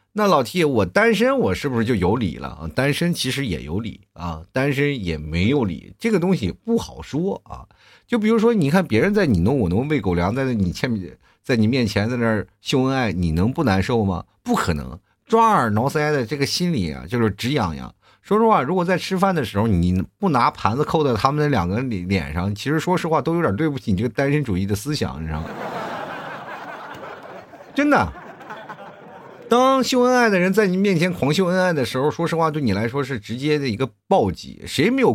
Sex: male